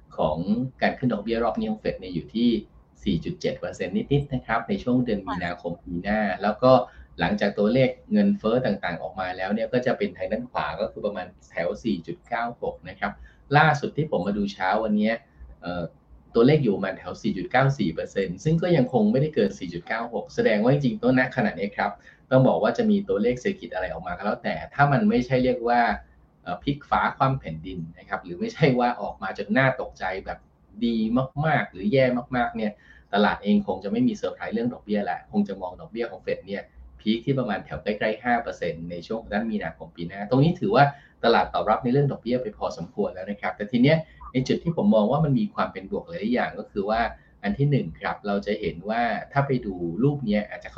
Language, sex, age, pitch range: Thai, male, 20-39, 95-130 Hz